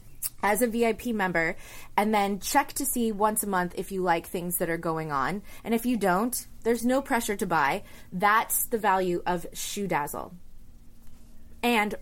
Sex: female